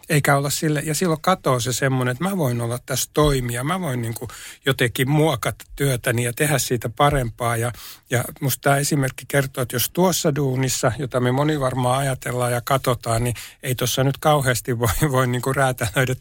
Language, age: Finnish, 60-79